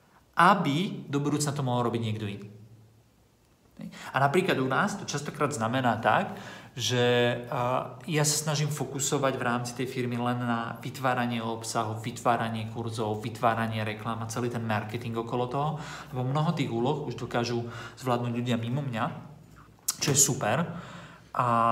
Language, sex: Slovak, male